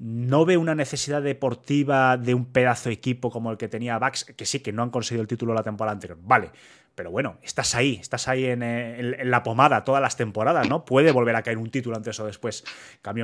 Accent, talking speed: Spanish, 235 wpm